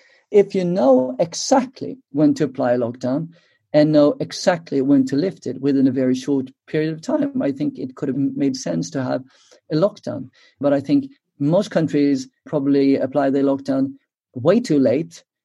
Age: 50-69